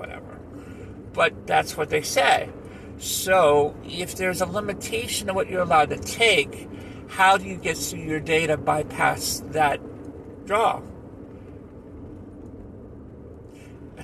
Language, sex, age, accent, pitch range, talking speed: English, male, 50-69, American, 95-160 Hz, 120 wpm